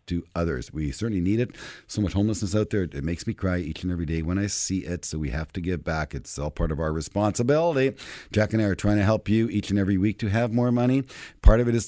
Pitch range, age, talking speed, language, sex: 80-110 Hz, 50-69, 280 wpm, English, male